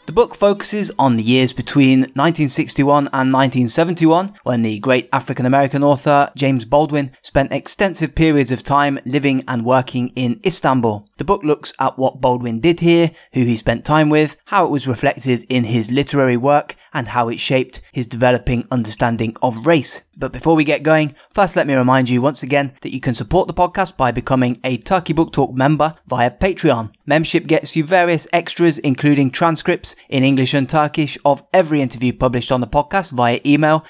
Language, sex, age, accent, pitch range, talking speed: English, male, 20-39, British, 130-160 Hz, 185 wpm